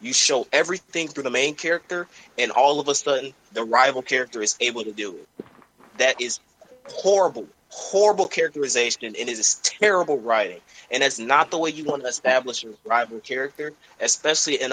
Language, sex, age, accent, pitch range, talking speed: English, male, 20-39, American, 115-170 Hz, 180 wpm